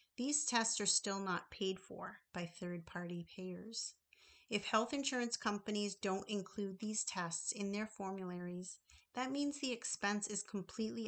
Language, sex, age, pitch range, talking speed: English, female, 40-59, 180-220 Hz, 145 wpm